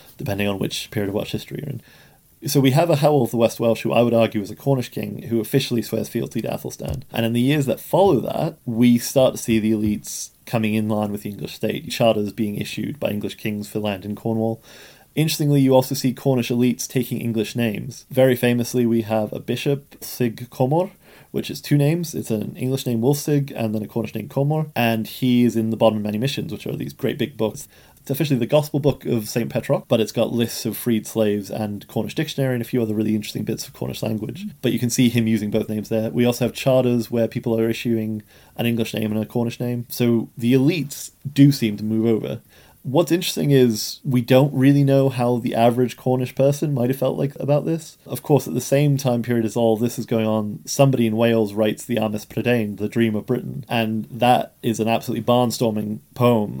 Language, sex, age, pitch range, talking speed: English, male, 20-39, 110-135 Hz, 230 wpm